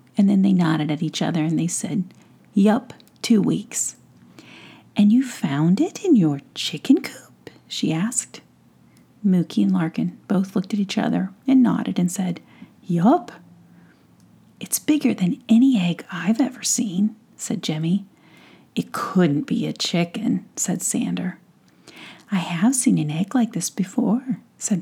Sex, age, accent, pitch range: female, 40-59, American, 180-240 Hz